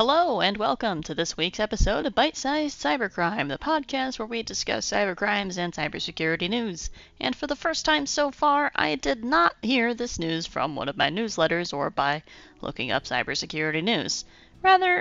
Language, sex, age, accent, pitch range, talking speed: English, female, 30-49, American, 160-240 Hz, 175 wpm